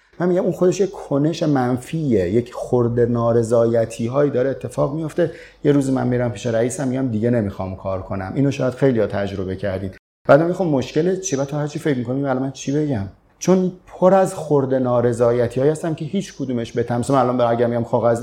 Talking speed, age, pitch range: 195 wpm, 30-49, 115-145 Hz